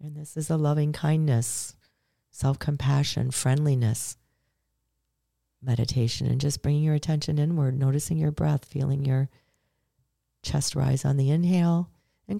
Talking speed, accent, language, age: 120 wpm, American, English, 40-59